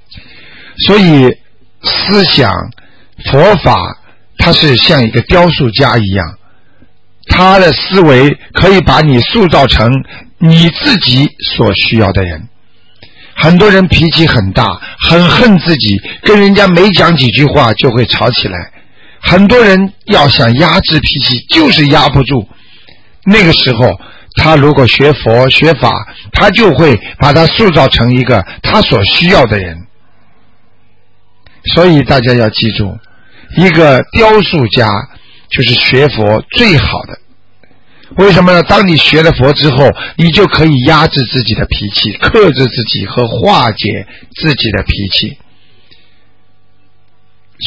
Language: Chinese